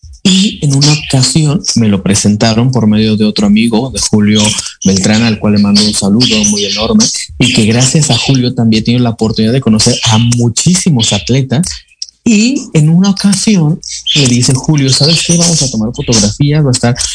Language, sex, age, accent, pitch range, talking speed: Spanish, male, 30-49, Mexican, 110-130 Hz, 185 wpm